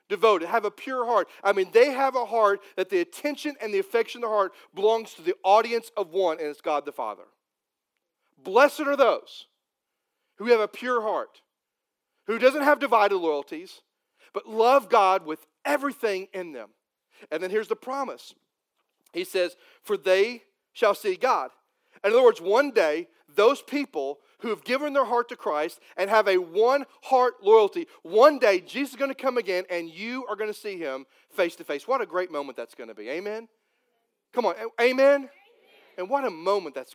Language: English